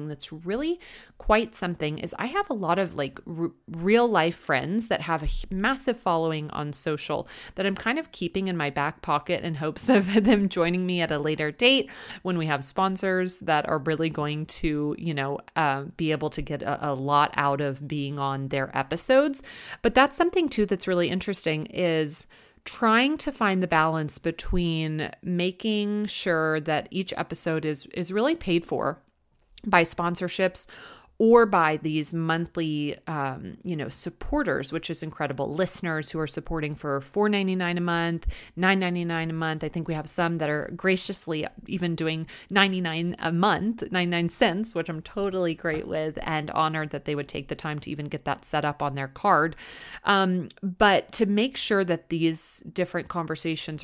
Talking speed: 175 wpm